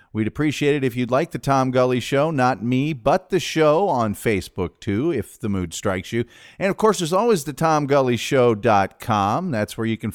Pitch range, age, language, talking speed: 105-145 Hz, 40-59, English, 200 wpm